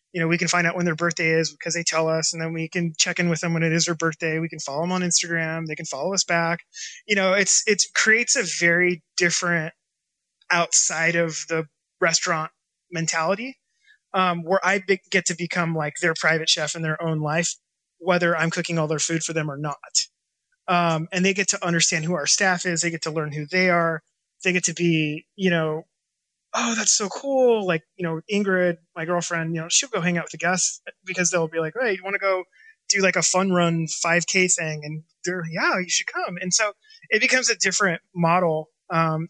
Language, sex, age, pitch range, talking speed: English, male, 20-39, 165-190 Hz, 225 wpm